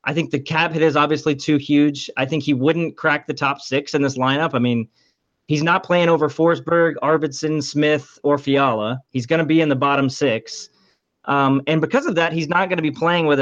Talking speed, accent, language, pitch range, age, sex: 230 wpm, American, English, 130-160 Hz, 30-49, male